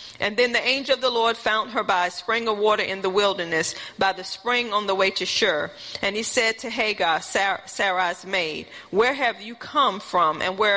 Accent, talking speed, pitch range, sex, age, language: American, 215 wpm, 195-245 Hz, female, 40-59, English